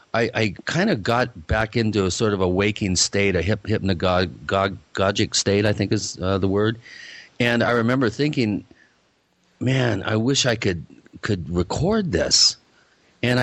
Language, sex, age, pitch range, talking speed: English, male, 40-59, 95-115 Hz, 160 wpm